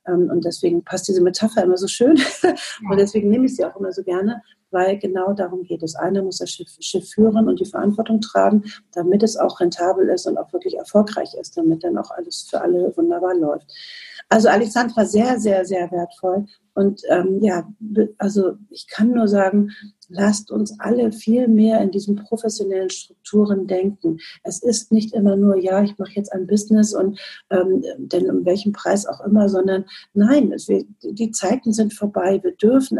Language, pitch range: German, 190-245 Hz